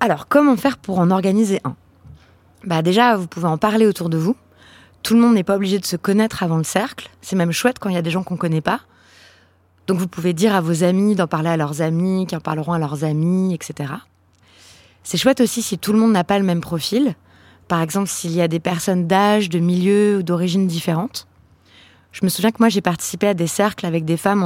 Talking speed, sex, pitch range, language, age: 240 wpm, female, 160-200 Hz, French, 20-39